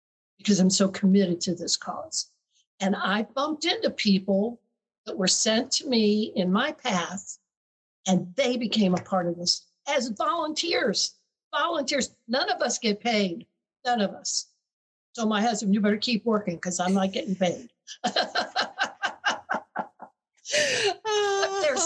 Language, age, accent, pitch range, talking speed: English, 60-79, American, 185-250 Hz, 140 wpm